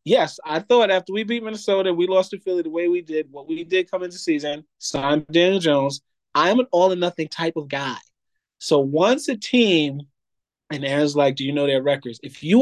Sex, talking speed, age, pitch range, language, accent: male, 210 wpm, 30-49, 155-200 Hz, English, American